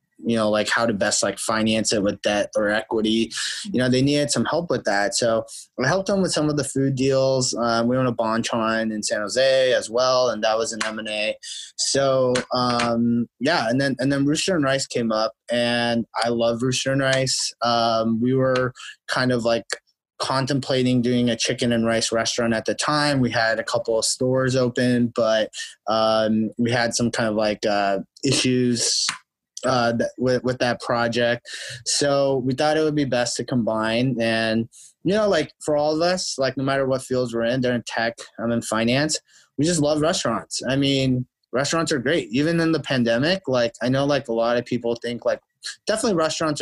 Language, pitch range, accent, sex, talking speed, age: English, 115-135 Hz, American, male, 200 wpm, 20-39